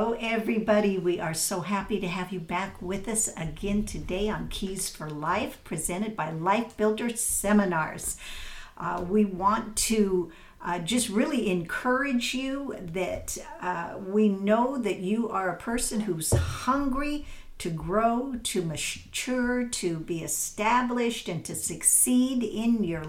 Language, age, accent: English, 50-69, American